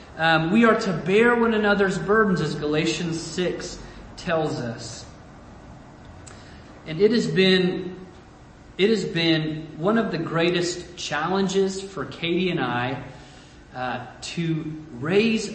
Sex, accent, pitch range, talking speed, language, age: male, American, 125-165 Hz, 125 wpm, English, 30-49